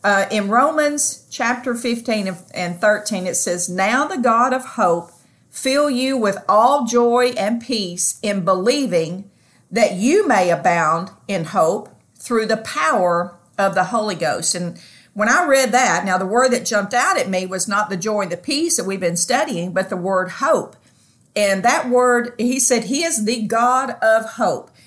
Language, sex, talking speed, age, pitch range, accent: English, female, 180 wpm, 50-69, 200-270 Hz, American